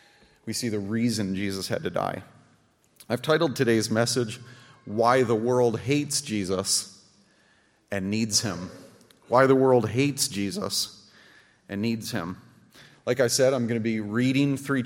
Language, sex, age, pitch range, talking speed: English, male, 30-49, 115-140 Hz, 150 wpm